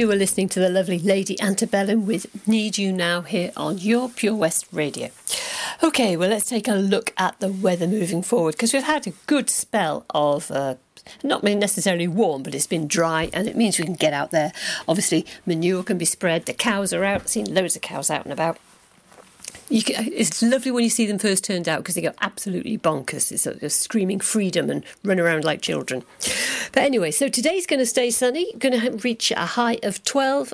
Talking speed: 215 wpm